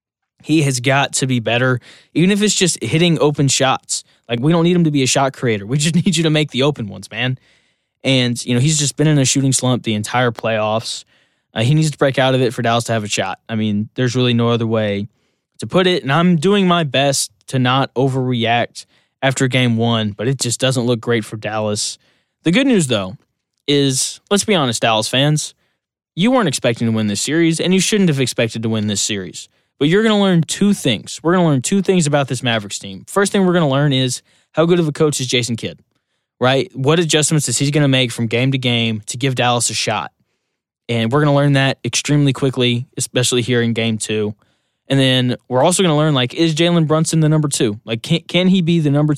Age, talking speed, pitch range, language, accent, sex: 10-29, 240 wpm, 115-155 Hz, English, American, male